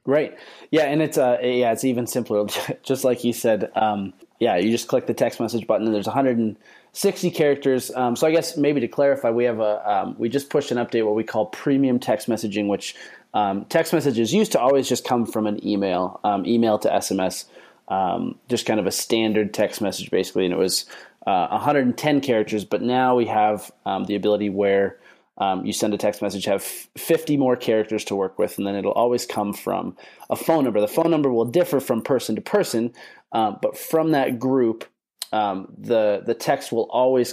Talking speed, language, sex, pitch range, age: 210 wpm, English, male, 105-130 Hz, 20-39